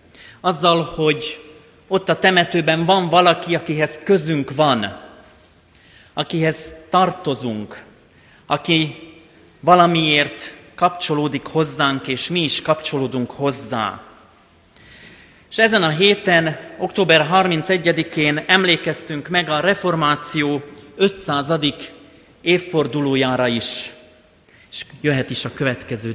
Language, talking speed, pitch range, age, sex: Hungarian, 90 wpm, 135-170 Hz, 30-49, male